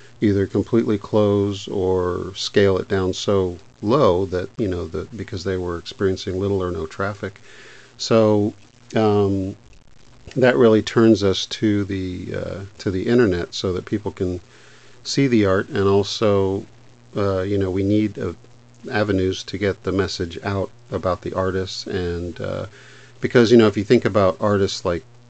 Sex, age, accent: male, 50-69, American